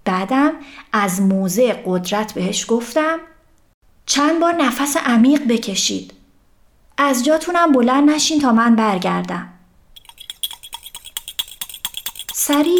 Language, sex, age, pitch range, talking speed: Persian, female, 30-49, 200-280 Hz, 90 wpm